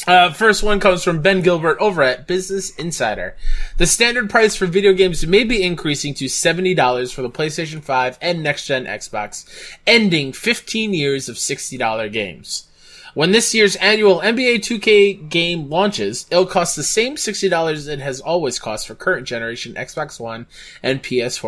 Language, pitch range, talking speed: English, 130-190 Hz, 165 wpm